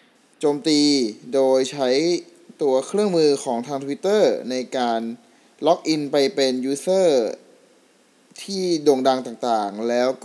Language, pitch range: Thai, 125-165 Hz